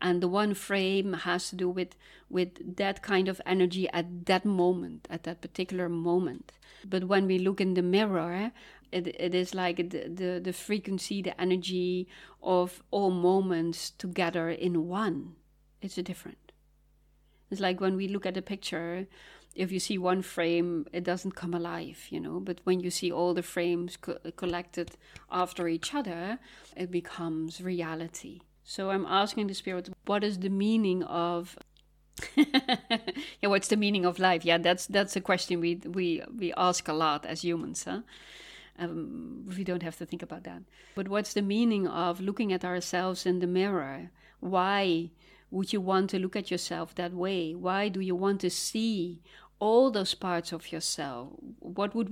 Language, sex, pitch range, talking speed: English, female, 175-195 Hz, 175 wpm